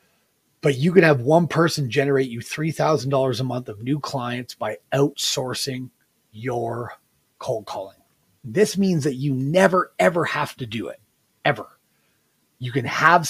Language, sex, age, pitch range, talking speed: English, male, 30-49, 125-155 Hz, 150 wpm